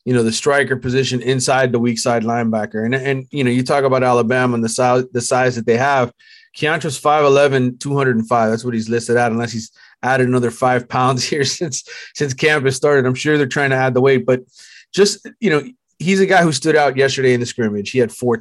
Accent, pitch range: American, 120-145 Hz